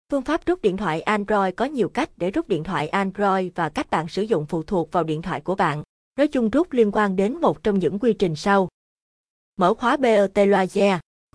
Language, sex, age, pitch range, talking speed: Vietnamese, female, 20-39, 180-250 Hz, 220 wpm